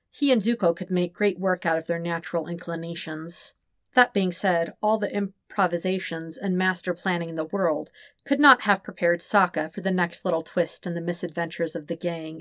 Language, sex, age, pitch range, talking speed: English, female, 40-59, 165-195 Hz, 195 wpm